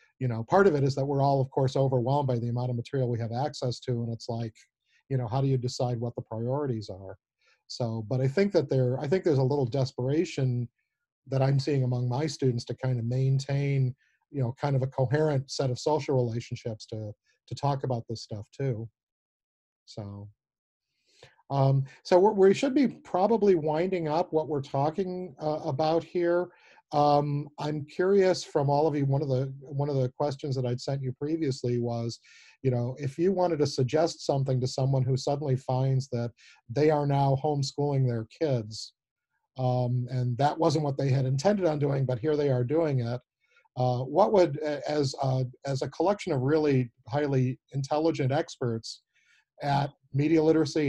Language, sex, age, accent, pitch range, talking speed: English, male, 40-59, American, 125-150 Hz, 190 wpm